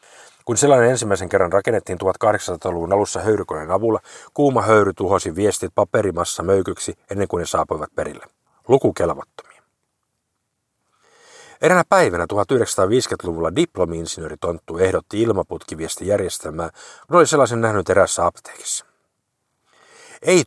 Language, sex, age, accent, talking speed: Finnish, male, 50-69, native, 105 wpm